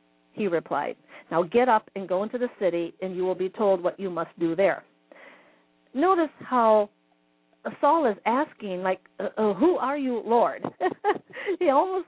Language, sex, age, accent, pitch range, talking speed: English, female, 50-69, American, 175-285 Hz, 170 wpm